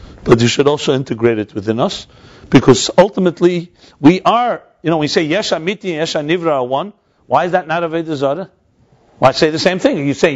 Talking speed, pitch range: 215 wpm, 120-160 Hz